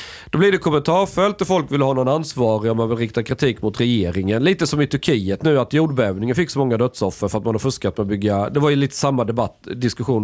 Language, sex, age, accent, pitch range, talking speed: Swedish, male, 40-59, native, 110-150 Hz, 250 wpm